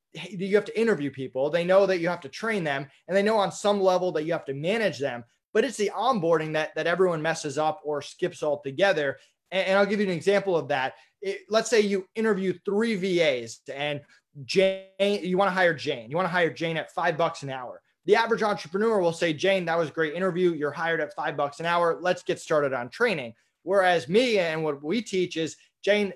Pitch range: 155-200 Hz